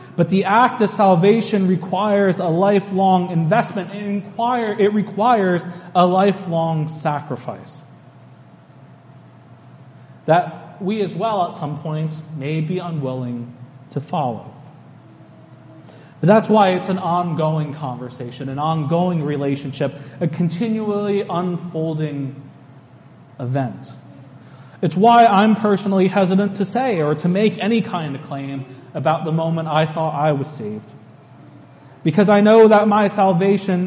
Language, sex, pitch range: English, male, 140-190 Hz